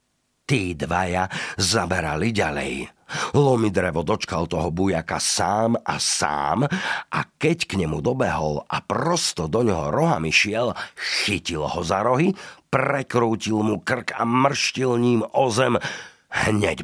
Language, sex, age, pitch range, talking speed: Slovak, male, 50-69, 85-120 Hz, 120 wpm